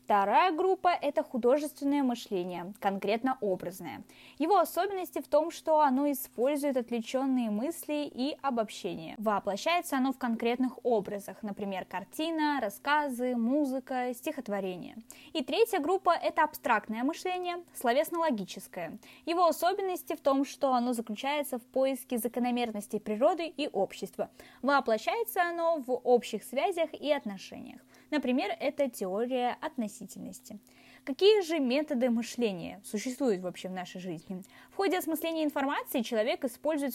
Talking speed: 120 wpm